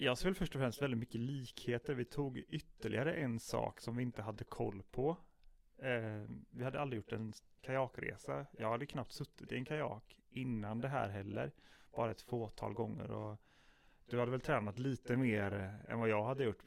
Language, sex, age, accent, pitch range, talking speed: Swedish, male, 30-49, native, 110-130 Hz, 190 wpm